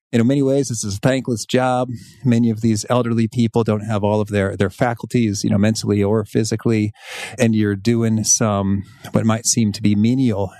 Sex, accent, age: male, American, 40-59